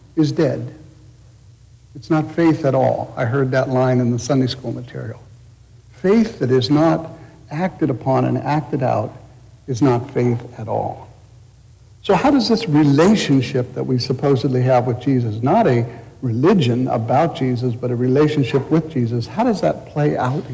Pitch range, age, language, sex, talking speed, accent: 115-140 Hz, 60-79, English, male, 165 wpm, American